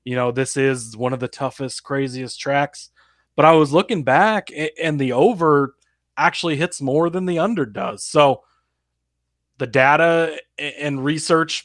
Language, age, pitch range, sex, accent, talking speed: English, 20-39, 130-165 Hz, male, American, 155 wpm